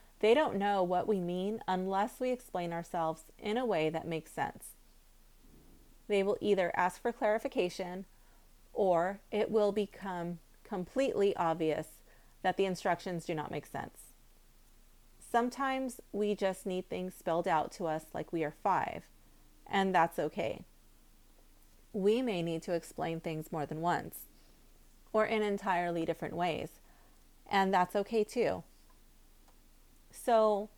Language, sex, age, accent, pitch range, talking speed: English, female, 30-49, American, 165-210 Hz, 135 wpm